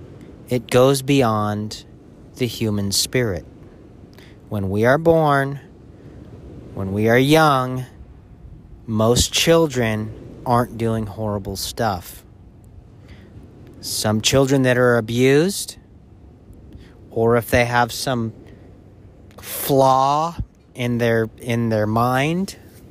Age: 40-59